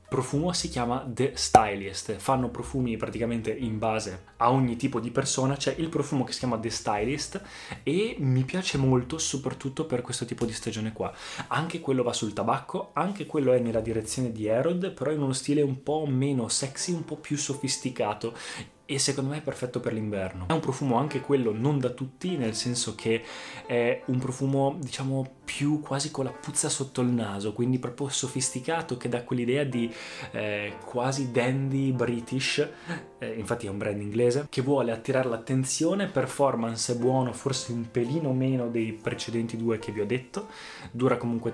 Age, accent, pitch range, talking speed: 20-39, native, 115-140 Hz, 180 wpm